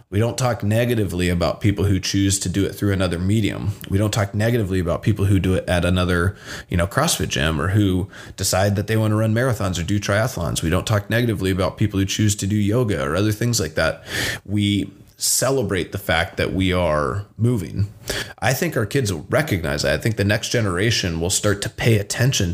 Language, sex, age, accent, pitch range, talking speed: English, male, 20-39, American, 90-110 Hz, 220 wpm